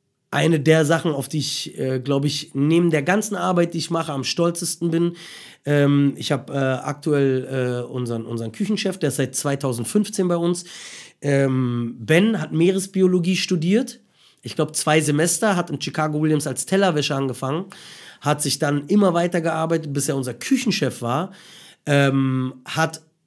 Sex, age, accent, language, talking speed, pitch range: male, 30-49, German, German, 165 wpm, 145-190 Hz